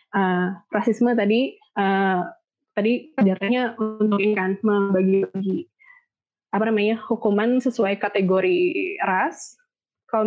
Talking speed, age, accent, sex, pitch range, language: 75 wpm, 20-39, native, female, 195-230 Hz, Indonesian